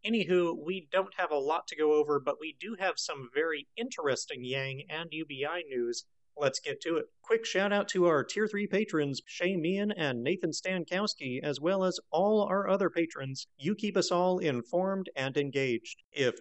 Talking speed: 190 wpm